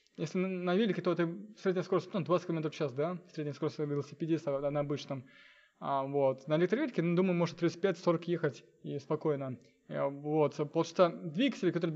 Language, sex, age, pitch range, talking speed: Russian, male, 20-39, 150-185 Hz, 170 wpm